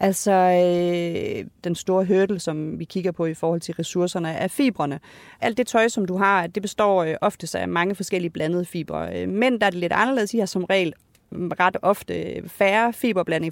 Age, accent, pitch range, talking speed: 30-49, native, 170-220 Hz, 190 wpm